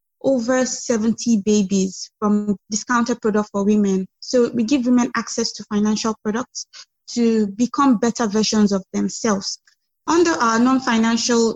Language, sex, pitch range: English, female, 205-235 Hz